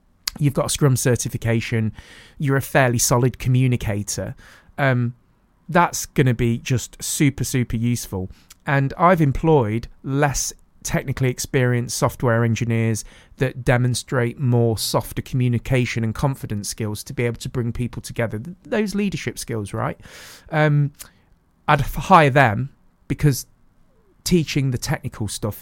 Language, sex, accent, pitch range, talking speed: English, male, British, 115-145 Hz, 125 wpm